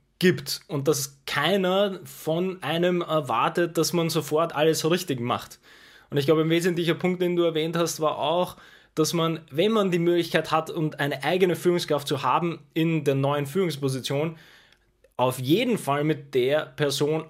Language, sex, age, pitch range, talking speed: German, male, 20-39, 150-175 Hz, 165 wpm